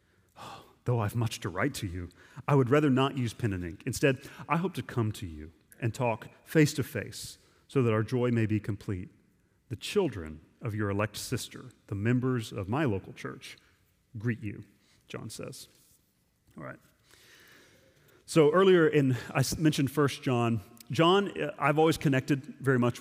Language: English